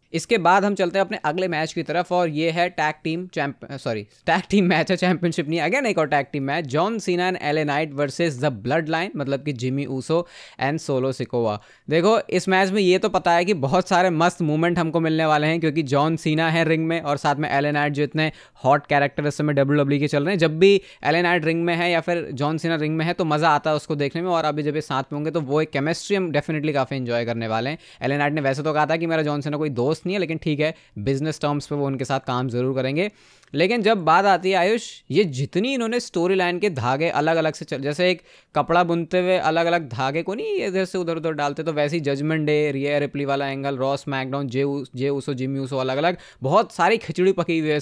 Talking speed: 230 wpm